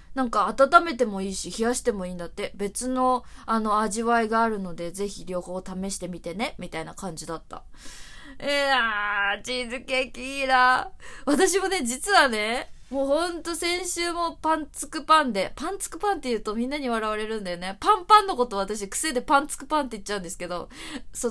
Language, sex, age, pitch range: Japanese, female, 20-39, 215-315 Hz